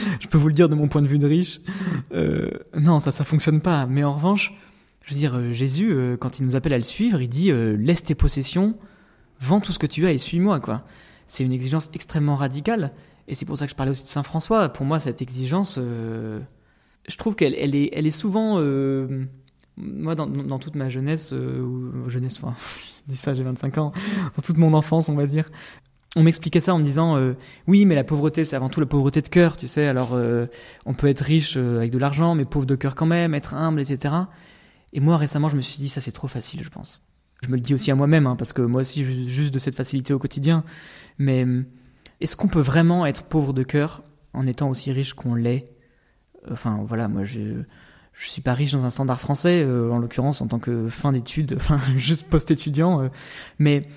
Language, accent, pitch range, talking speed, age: French, French, 130-160 Hz, 235 wpm, 20-39